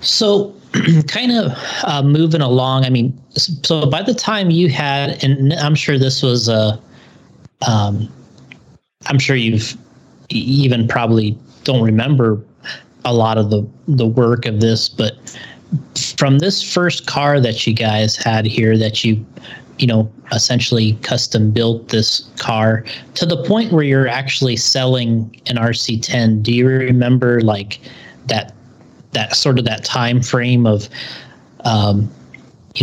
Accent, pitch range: American, 110-135 Hz